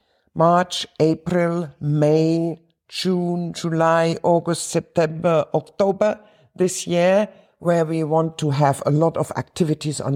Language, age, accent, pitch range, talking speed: English, 60-79, German, 135-165 Hz, 120 wpm